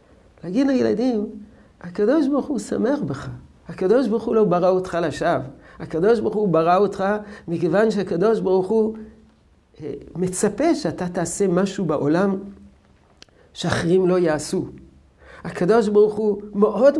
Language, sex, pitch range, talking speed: Hebrew, male, 140-195 Hz, 125 wpm